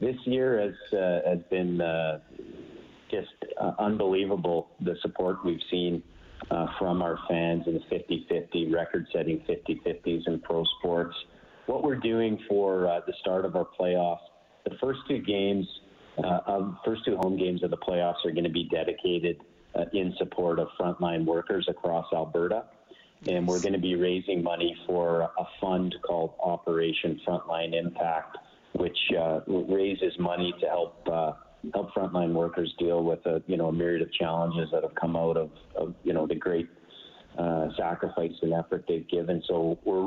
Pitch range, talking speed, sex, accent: 85-95 Hz, 170 wpm, male, American